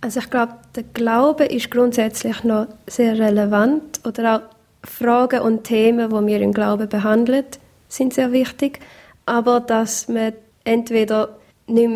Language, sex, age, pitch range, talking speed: German, female, 20-39, 215-245 Hz, 145 wpm